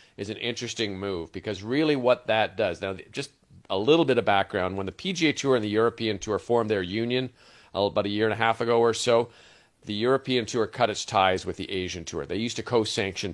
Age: 40-59